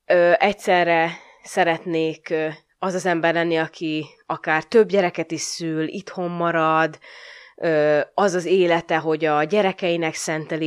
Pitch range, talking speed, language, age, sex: 165-230 Hz, 130 wpm, Hungarian, 20-39, female